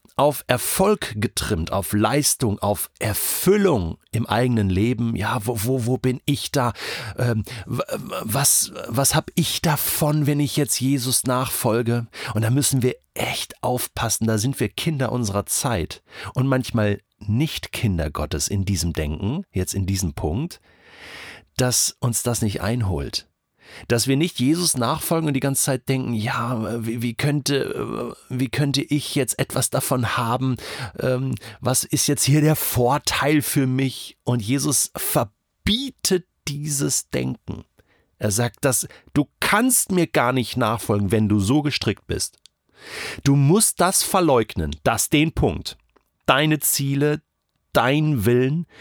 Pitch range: 110-145 Hz